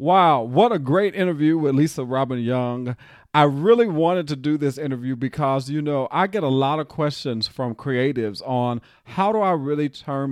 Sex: male